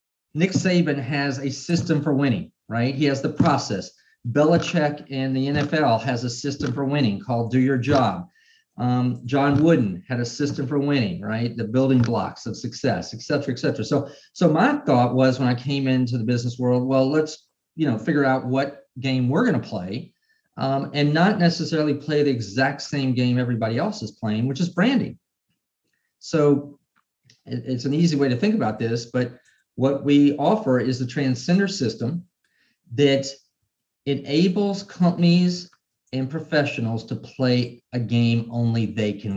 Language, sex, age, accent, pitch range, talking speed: English, male, 40-59, American, 120-145 Hz, 170 wpm